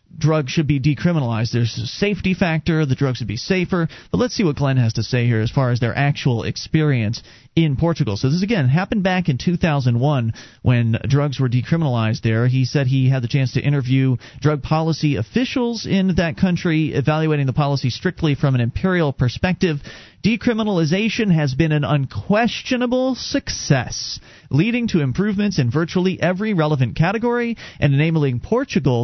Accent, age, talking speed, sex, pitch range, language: American, 40-59, 170 wpm, male, 125-180 Hz, English